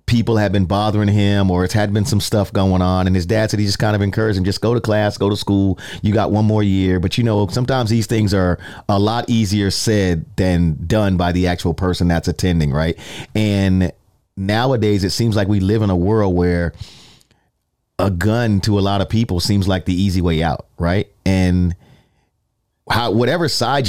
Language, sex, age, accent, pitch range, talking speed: English, male, 30-49, American, 95-115 Hz, 210 wpm